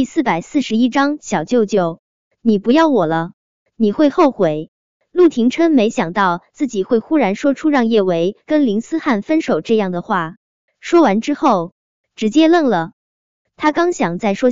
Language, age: Chinese, 20-39